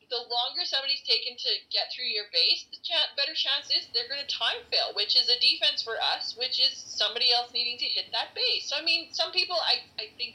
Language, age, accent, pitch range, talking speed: English, 30-49, American, 245-335 Hz, 240 wpm